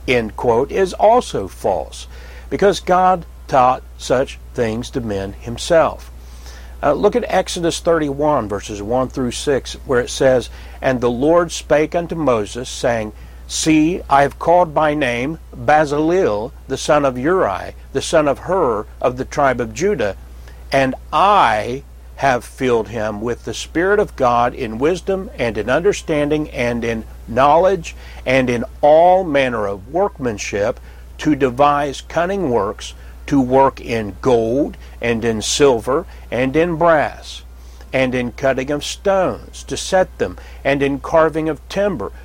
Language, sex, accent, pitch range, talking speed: English, male, American, 95-155 Hz, 145 wpm